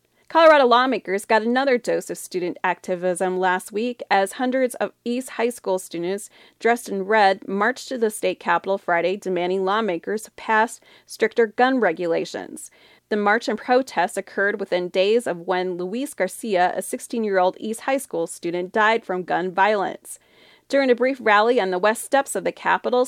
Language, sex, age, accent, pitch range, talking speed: English, female, 30-49, American, 190-245 Hz, 165 wpm